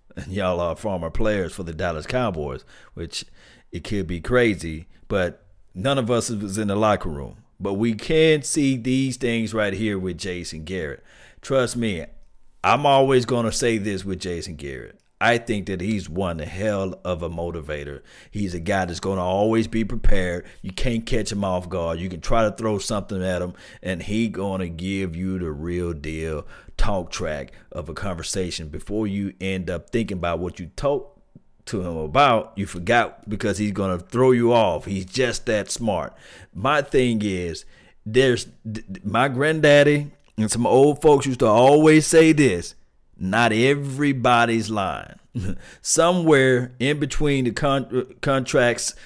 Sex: male